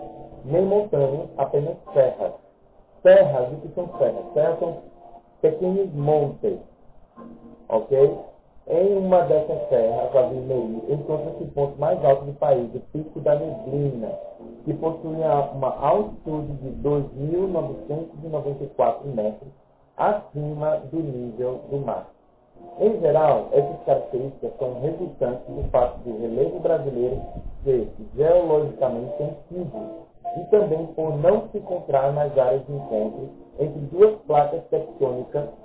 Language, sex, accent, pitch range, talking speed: Portuguese, male, Brazilian, 135-175 Hz, 120 wpm